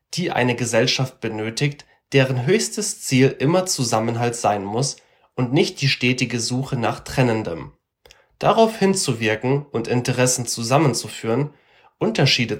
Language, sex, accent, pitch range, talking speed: German, male, German, 115-140 Hz, 115 wpm